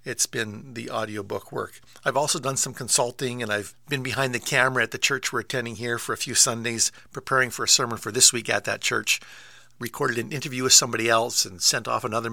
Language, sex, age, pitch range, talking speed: English, male, 50-69, 115-145 Hz, 225 wpm